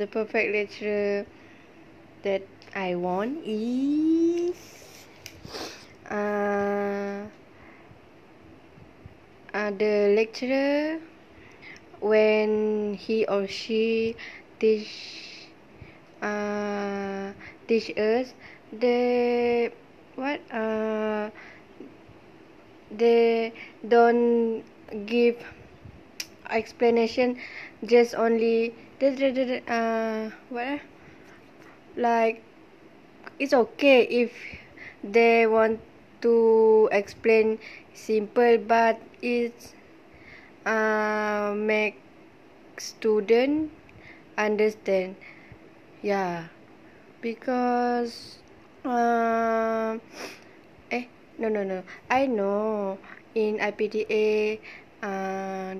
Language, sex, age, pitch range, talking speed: English, female, 20-39, 205-235 Hz, 65 wpm